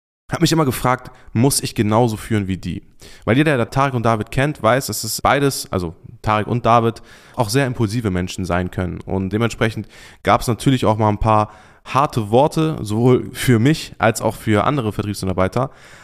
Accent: German